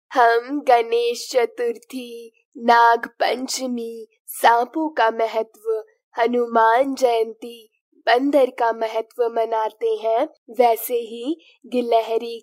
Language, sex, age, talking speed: Hindi, female, 20-39, 85 wpm